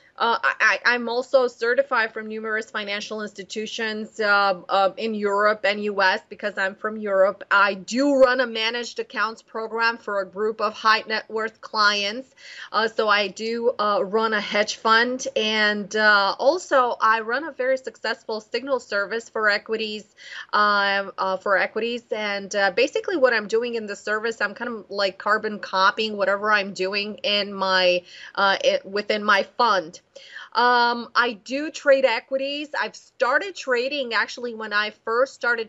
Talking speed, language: 160 wpm, English